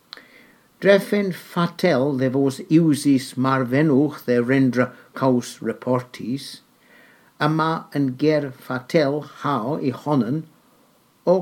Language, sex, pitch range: English, male, 125-155 Hz